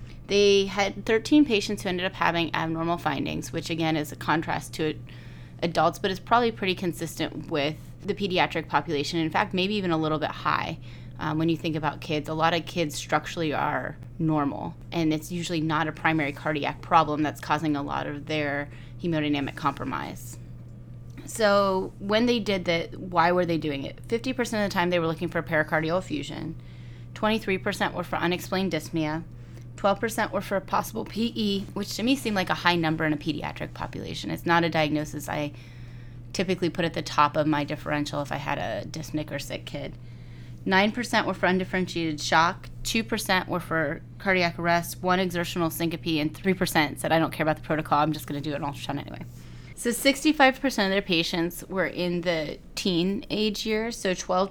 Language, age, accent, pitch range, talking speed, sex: English, 30-49, American, 150-190 Hz, 185 wpm, female